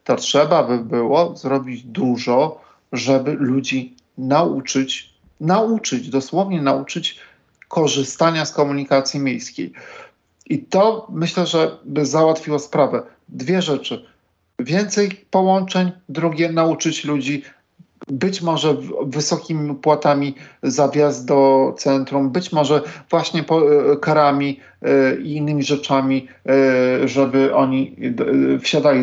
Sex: male